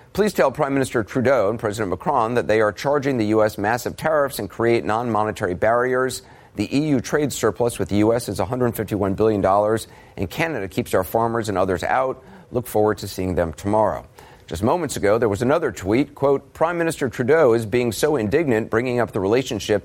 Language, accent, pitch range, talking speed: English, American, 100-125 Hz, 190 wpm